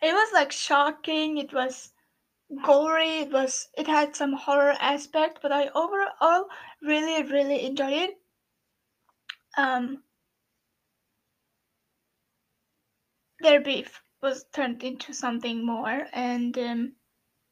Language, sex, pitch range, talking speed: English, female, 270-310 Hz, 105 wpm